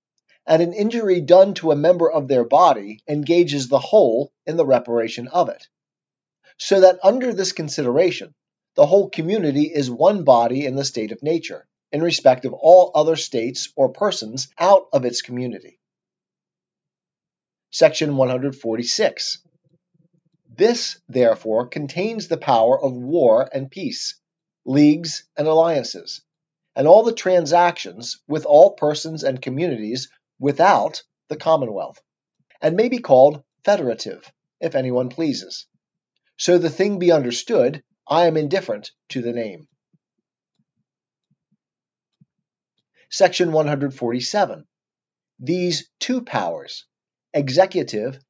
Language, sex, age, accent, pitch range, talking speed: English, male, 40-59, American, 135-180 Hz, 120 wpm